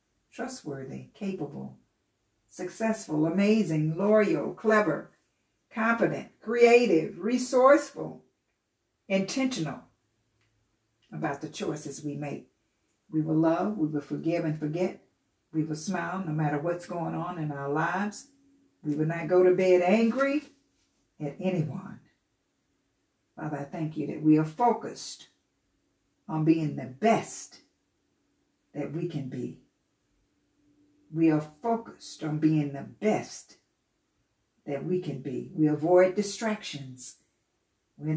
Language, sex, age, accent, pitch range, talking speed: English, female, 60-79, American, 145-185 Hz, 115 wpm